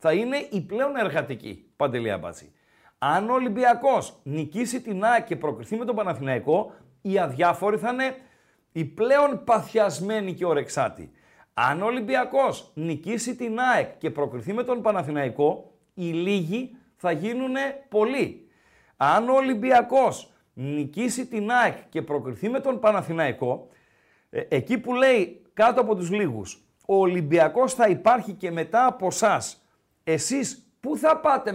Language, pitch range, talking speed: Greek, 145-245 Hz, 135 wpm